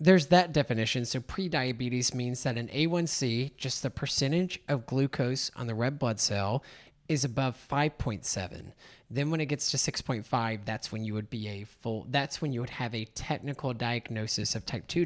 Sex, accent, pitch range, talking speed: male, American, 115-150 Hz, 190 wpm